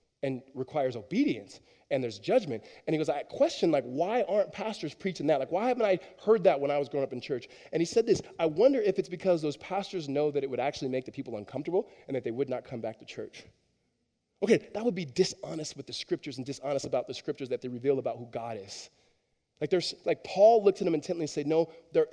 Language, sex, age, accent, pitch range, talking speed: English, male, 20-39, American, 125-170 Hz, 245 wpm